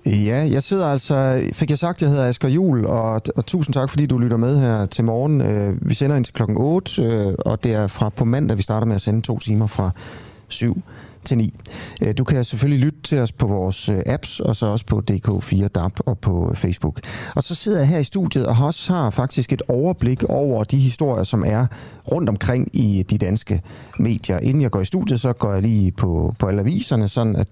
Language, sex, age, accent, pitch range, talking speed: Danish, male, 30-49, native, 105-135 Hz, 220 wpm